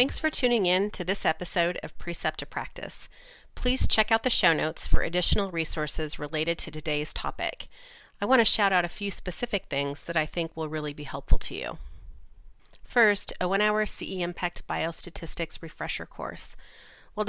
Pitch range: 155-200 Hz